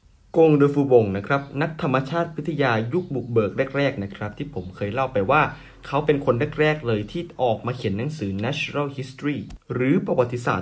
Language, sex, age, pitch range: Thai, male, 20-39, 115-155 Hz